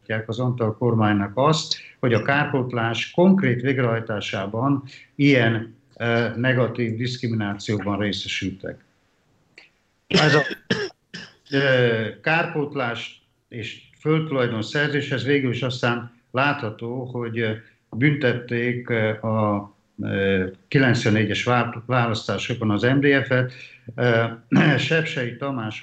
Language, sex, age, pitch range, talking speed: Hungarian, male, 50-69, 110-130 Hz, 85 wpm